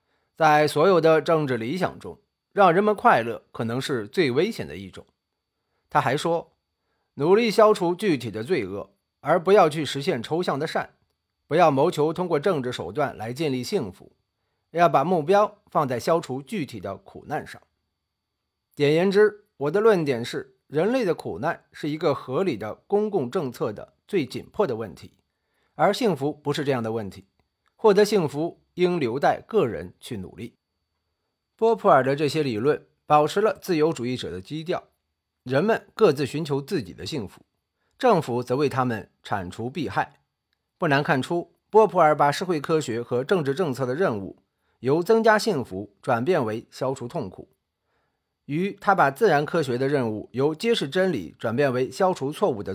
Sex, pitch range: male, 130-195 Hz